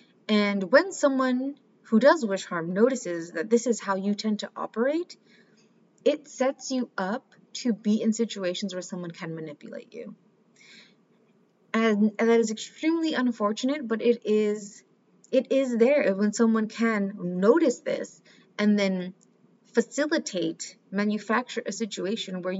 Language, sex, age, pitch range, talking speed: English, female, 30-49, 190-230 Hz, 140 wpm